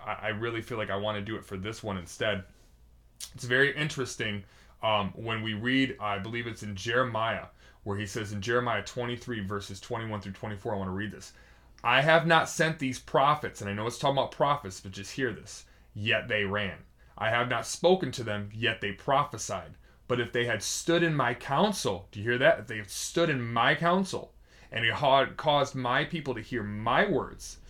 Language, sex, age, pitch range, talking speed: English, male, 30-49, 105-140 Hz, 210 wpm